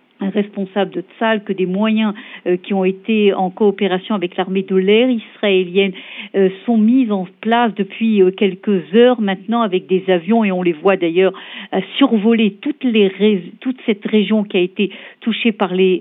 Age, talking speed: 50-69, 185 wpm